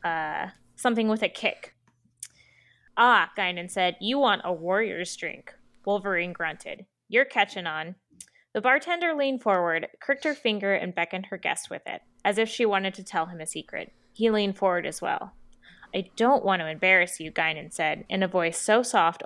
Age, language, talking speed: 20-39, English, 180 wpm